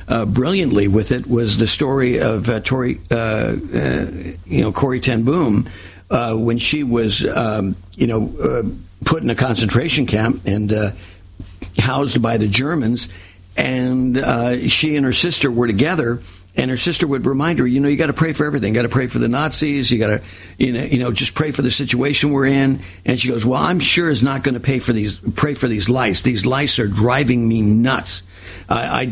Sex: male